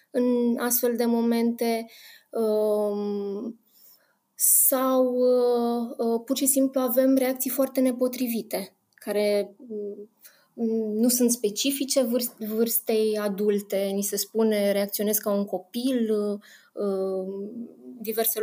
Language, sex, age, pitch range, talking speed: Romanian, female, 20-39, 200-230 Hz, 85 wpm